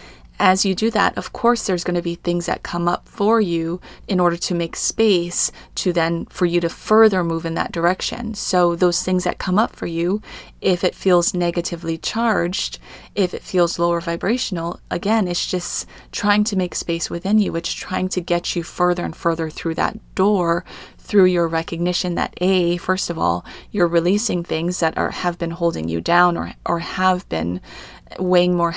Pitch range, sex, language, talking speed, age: 170-195 Hz, female, English, 195 wpm, 30-49